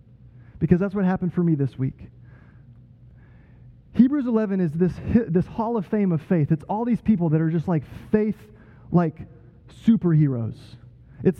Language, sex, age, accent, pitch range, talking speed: Italian, male, 20-39, American, 125-205 Hz, 155 wpm